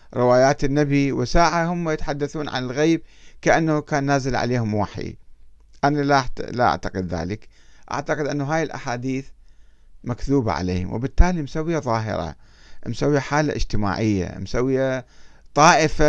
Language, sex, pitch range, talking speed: Arabic, male, 95-150 Hz, 110 wpm